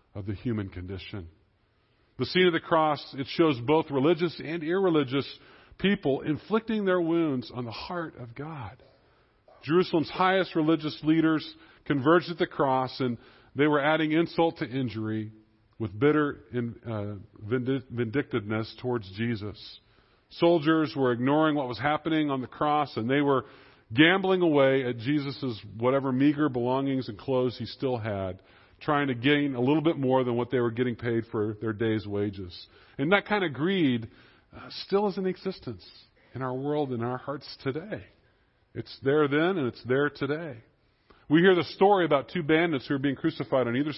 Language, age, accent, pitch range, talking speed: English, 40-59, American, 115-155 Hz, 170 wpm